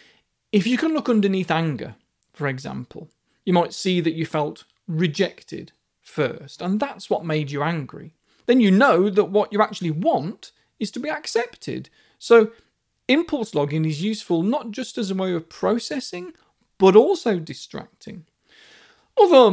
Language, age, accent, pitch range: English, 40-59, British, 165-225 Hz